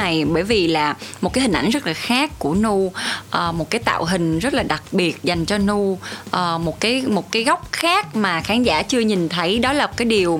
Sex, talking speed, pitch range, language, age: female, 240 wpm, 165-230 Hz, Vietnamese, 20-39